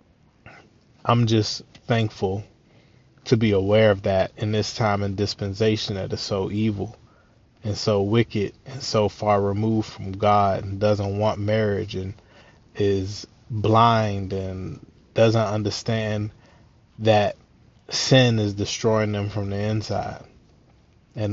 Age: 20-39